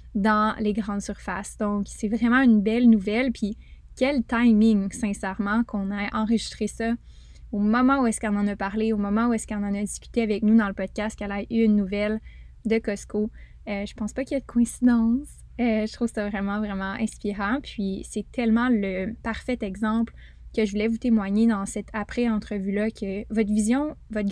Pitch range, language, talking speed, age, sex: 205-235 Hz, French, 195 wpm, 10-29, female